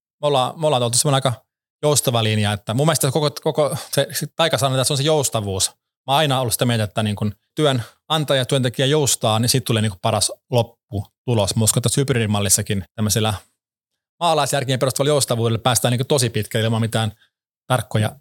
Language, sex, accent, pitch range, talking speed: Finnish, male, native, 110-135 Hz, 180 wpm